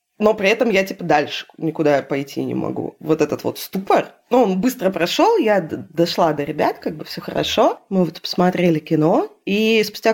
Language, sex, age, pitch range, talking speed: Russian, female, 20-39, 165-230 Hz, 195 wpm